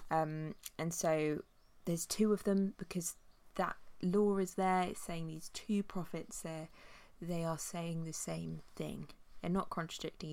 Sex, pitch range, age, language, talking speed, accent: female, 165-190 Hz, 20-39, English, 155 wpm, British